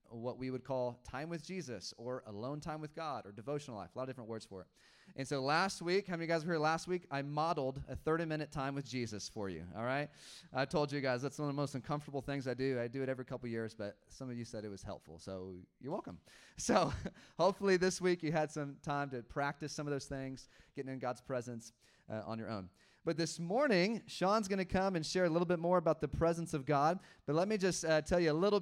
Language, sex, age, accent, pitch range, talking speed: English, male, 30-49, American, 125-160 Hz, 260 wpm